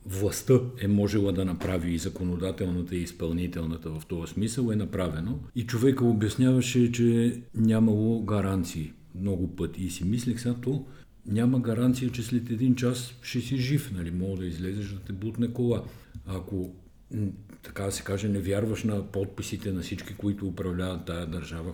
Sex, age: male, 50-69